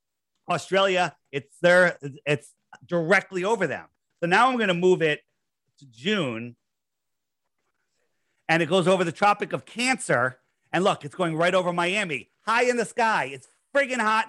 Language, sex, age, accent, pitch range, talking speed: English, male, 40-59, American, 150-195 Hz, 160 wpm